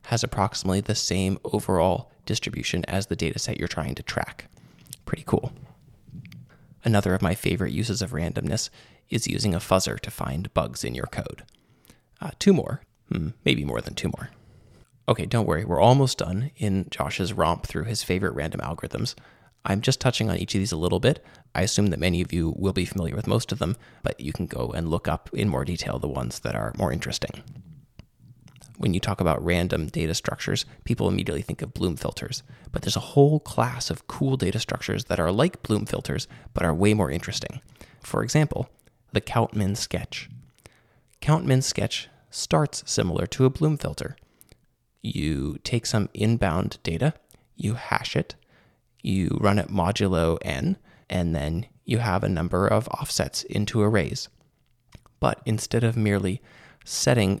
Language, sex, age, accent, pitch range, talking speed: English, male, 20-39, American, 90-125 Hz, 180 wpm